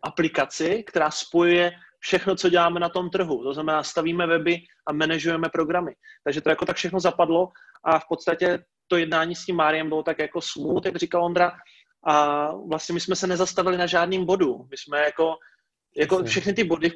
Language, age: Czech, 30-49